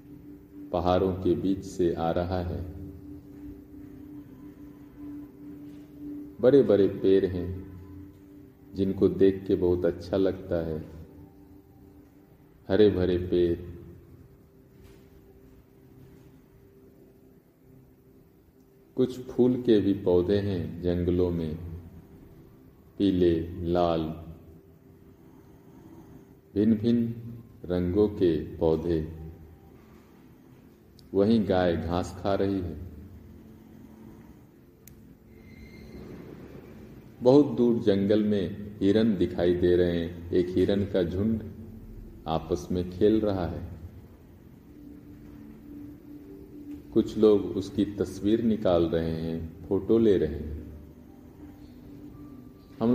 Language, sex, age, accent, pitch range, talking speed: Hindi, male, 50-69, native, 85-110 Hz, 80 wpm